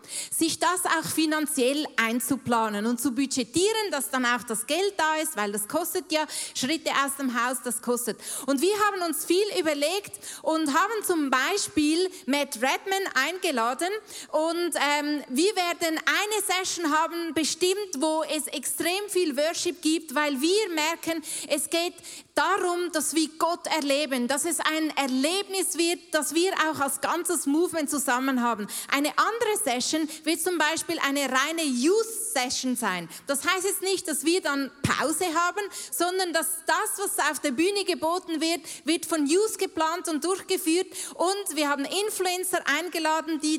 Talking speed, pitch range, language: 160 wpm, 280-350 Hz, German